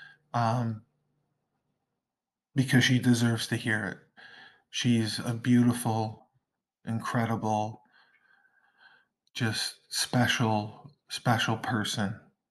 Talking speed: 70 wpm